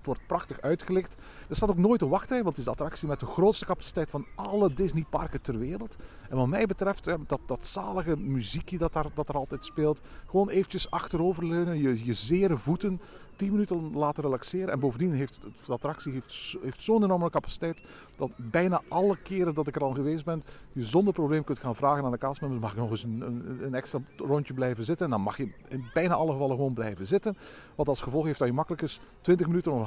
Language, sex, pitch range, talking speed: Dutch, male, 135-180 Hz, 230 wpm